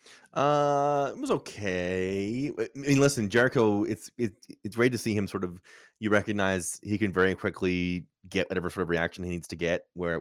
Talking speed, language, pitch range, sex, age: 195 wpm, English, 90-115 Hz, male, 20-39